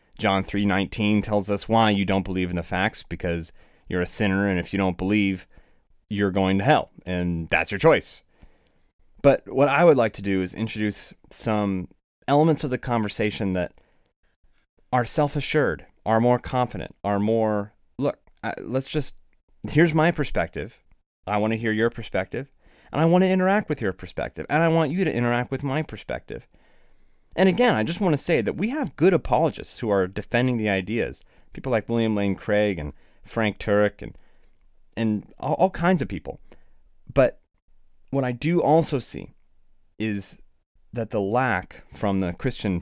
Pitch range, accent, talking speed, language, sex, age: 90-125 Hz, American, 175 wpm, English, male, 30-49